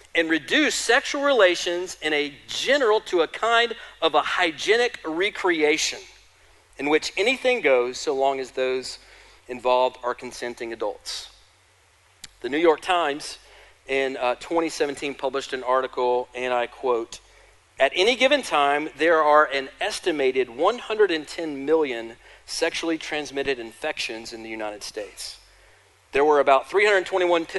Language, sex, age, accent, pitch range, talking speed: English, male, 40-59, American, 125-195 Hz, 130 wpm